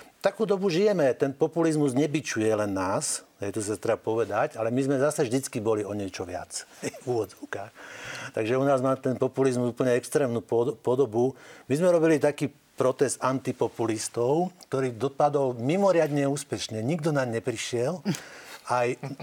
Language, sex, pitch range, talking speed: Slovak, male, 115-145 Hz, 145 wpm